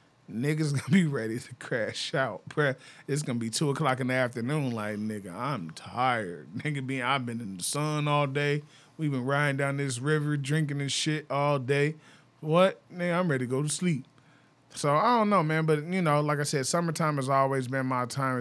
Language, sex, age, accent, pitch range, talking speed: English, male, 20-39, American, 135-165 Hz, 210 wpm